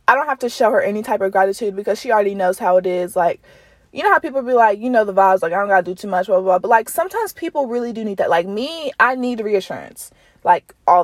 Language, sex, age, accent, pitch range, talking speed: English, female, 20-39, American, 180-225 Hz, 290 wpm